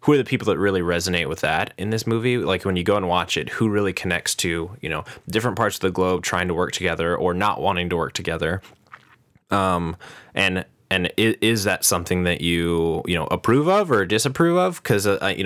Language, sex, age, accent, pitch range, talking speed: English, male, 20-39, American, 90-110 Hz, 225 wpm